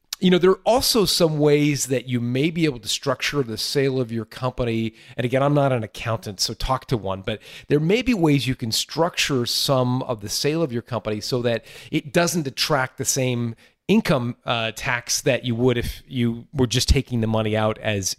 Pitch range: 110-140 Hz